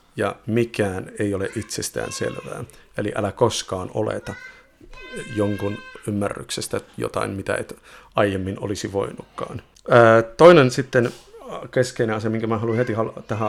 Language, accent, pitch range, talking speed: Finnish, native, 105-130 Hz, 120 wpm